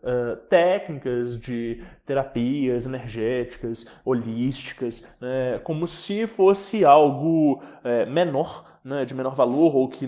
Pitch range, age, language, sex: 130-180 Hz, 20-39, English, male